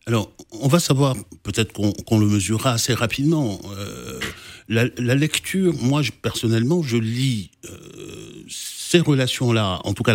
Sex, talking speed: male, 140 wpm